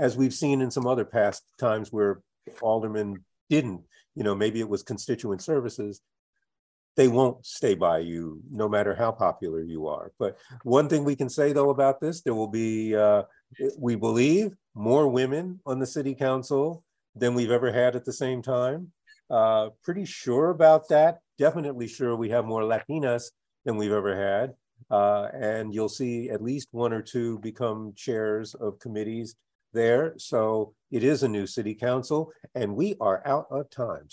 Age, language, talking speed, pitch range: 40-59, English, 175 wpm, 110-135 Hz